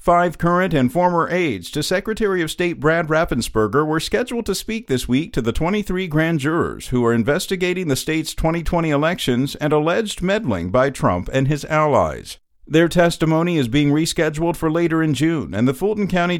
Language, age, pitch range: English, 50-69, 130-175 Hz